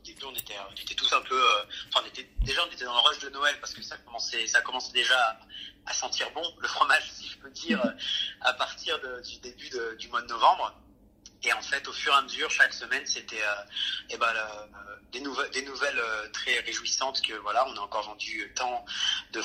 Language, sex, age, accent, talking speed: French, male, 30-49, French, 235 wpm